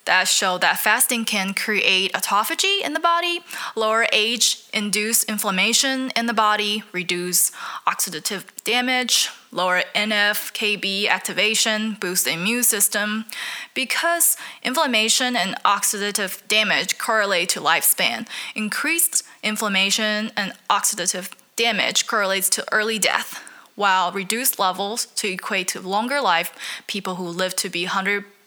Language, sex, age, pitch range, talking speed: English, female, 10-29, 185-230 Hz, 120 wpm